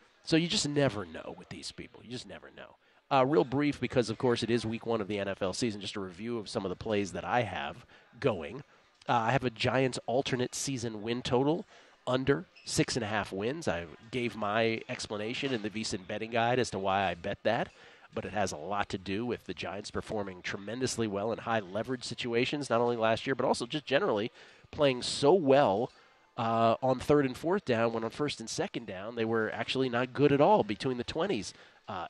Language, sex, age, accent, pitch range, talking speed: English, male, 30-49, American, 110-130 Hz, 220 wpm